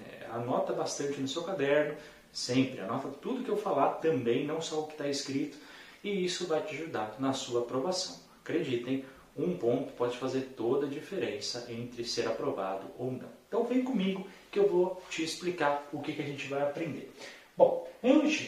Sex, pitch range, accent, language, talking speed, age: male, 140-200 Hz, Brazilian, Portuguese, 180 wpm, 40-59